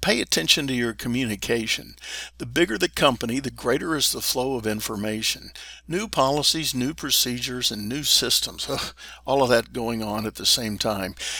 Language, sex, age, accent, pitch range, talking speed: English, male, 50-69, American, 110-140 Hz, 170 wpm